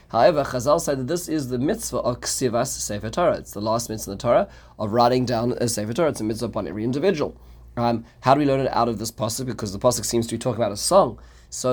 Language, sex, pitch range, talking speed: English, male, 105-130 Hz, 265 wpm